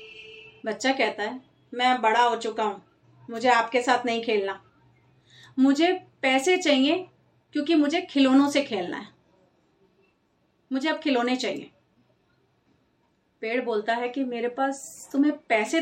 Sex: female